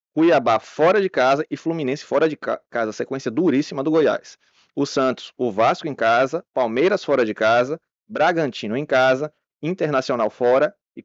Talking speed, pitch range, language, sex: 165 wpm, 130-160 Hz, Portuguese, male